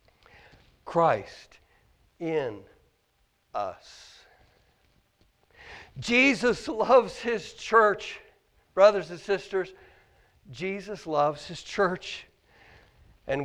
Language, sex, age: English, male, 60-79